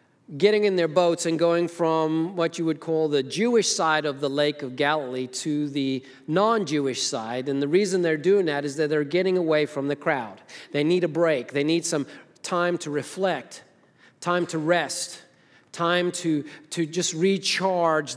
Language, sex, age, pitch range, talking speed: English, male, 40-59, 160-195 Hz, 180 wpm